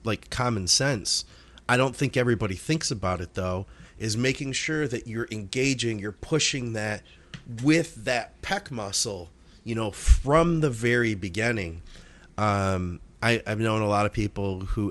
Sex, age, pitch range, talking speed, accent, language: male, 30-49, 95-115 Hz, 155 wpm, American, English